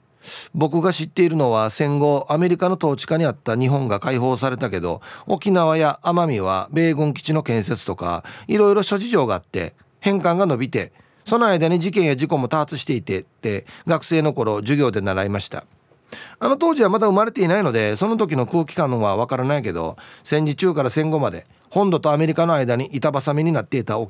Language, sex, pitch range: Japanese, male, 120-175 Hz